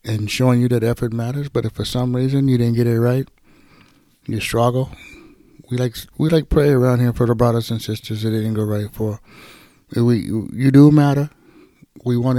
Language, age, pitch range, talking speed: English, 60-79, 110-135 Hz, 200 wpm